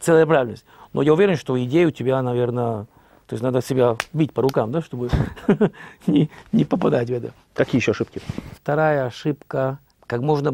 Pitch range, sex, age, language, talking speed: 115-155 Hz, male, 50-69, Russian, 170 wpm